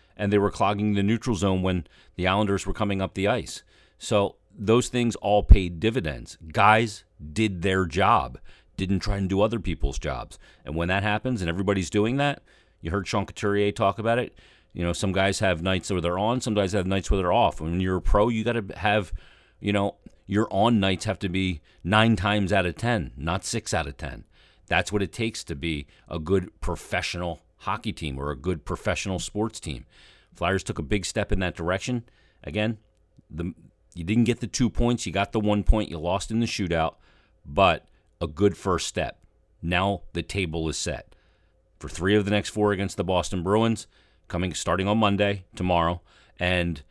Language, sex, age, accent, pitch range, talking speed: English, male, 40-59, American, 85-105 Hz, 200 wpm